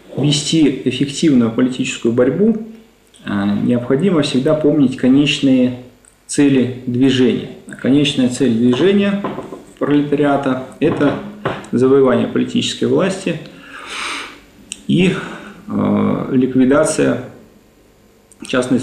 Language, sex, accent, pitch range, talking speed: Russian, male, native, 125-150 Hz, 70 wpm